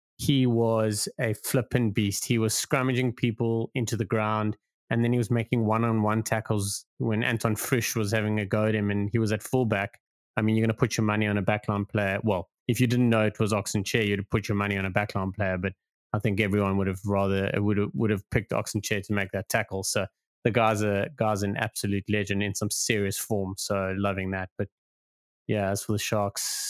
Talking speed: 230 wpm